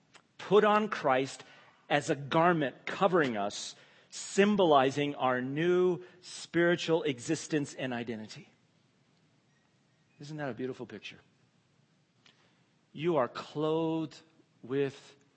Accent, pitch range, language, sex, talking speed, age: American, 125-155 Hz, English, male, 95 wpm, 50-69